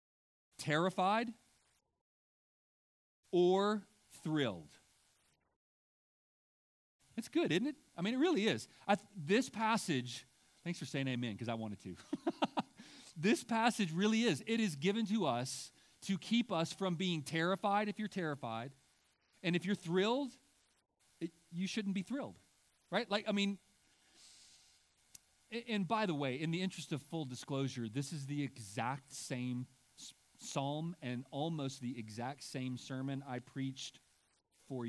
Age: 40-59